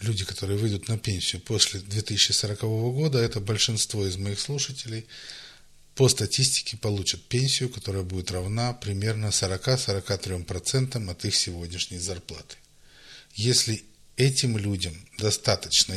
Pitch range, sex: 95-125 Hz, male